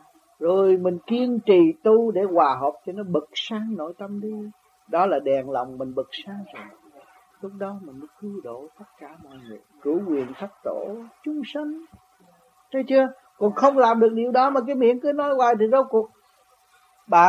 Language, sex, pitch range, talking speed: Vietnamese, male, 165-245 Hz, 195 wpm